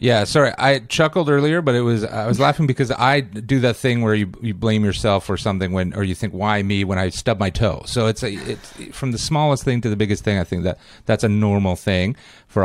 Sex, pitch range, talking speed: male, 95-125 Hz, 255 wpm